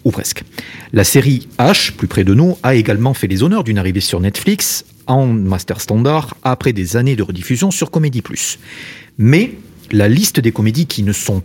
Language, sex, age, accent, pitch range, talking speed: French, male, 40-59, French, 110-155 Hz, 195 wpm